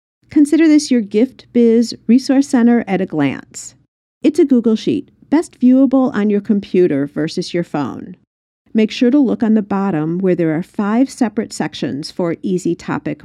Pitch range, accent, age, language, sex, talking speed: 170-235 Hz, American, 50-69, English, female, 170 wpm